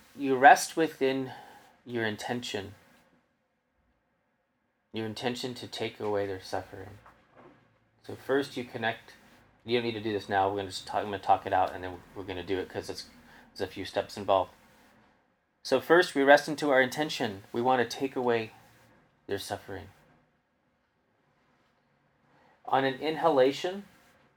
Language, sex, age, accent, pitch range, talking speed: English, male, 30-49, American, 105-135 Hz, 160 wpm